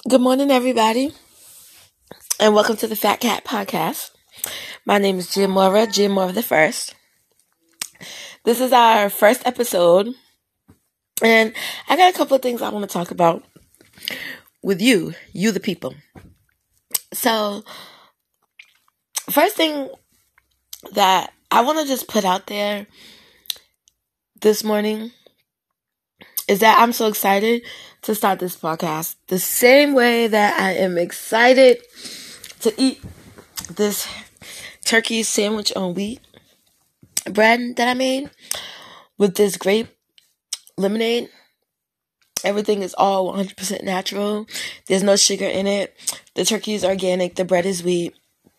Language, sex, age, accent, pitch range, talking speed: English, female, 20-39, American, 190-230 Hz, 125 wpm